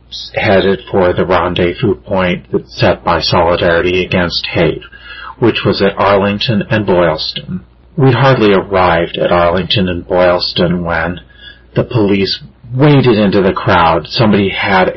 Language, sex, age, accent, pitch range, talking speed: English, male, 40-59, American, 90-115 Hz, 130 wpm